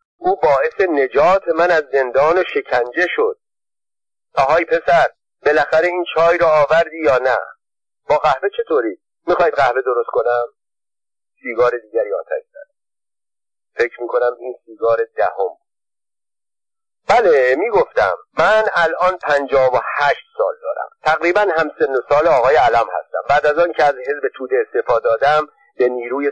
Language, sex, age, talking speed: Persian, male, 50-69, 145 wpm